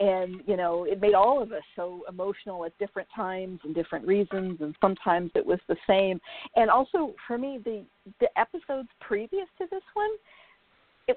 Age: 50-69